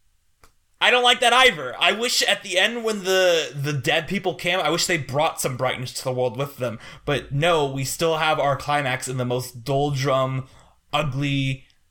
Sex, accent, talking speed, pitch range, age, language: male, American, 195 wpm, 135-200 Hz, 20-39, English